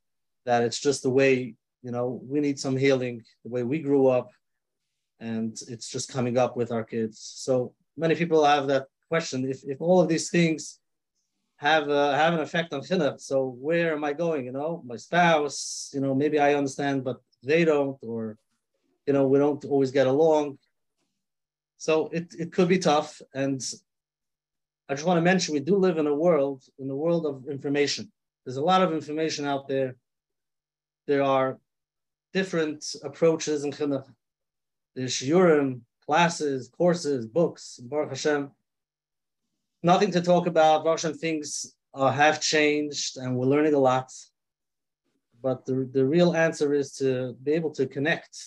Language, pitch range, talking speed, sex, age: English, 130-160 Hz, 165 wpm, male, 30-49